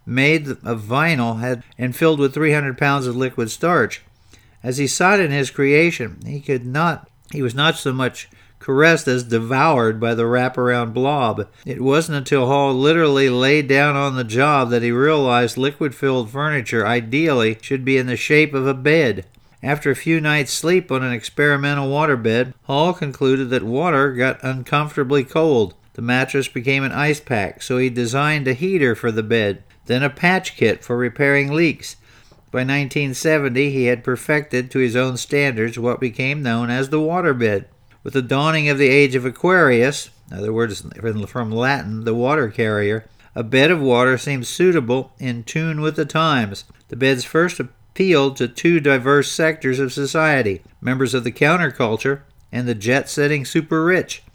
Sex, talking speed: male, 170 wpm